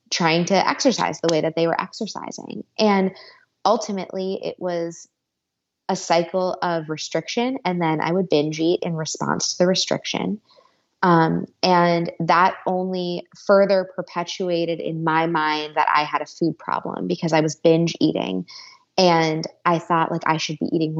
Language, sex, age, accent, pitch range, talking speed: English, female, 20-39, American, 160-185 Hz, 160 wpm